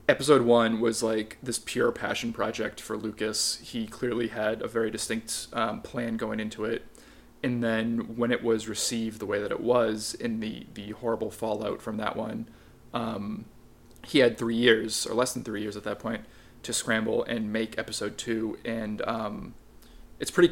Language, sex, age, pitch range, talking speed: English, male, 20-39, 110-125 Hz, 185 wpm